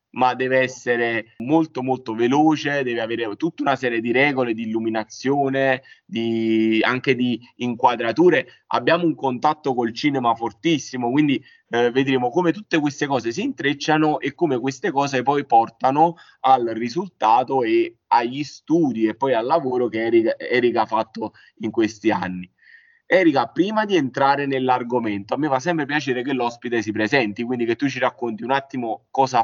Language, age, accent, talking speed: Italian, 20-39, native, 155 wpm